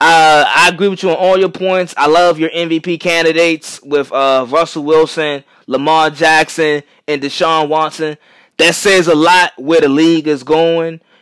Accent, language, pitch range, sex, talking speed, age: American, English, 145-175 Hz, male, 170 wpm, 20-39